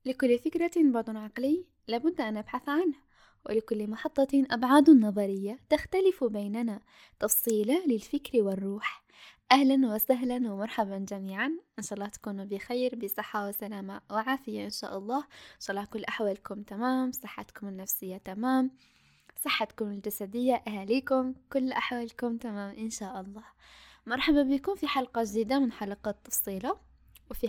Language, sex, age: Arabic, female, 10-29